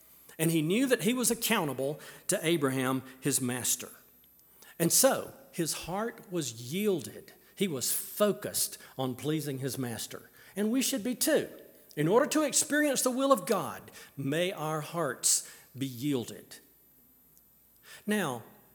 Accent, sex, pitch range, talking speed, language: American, male, 150-225 Hz, 140 wpm, English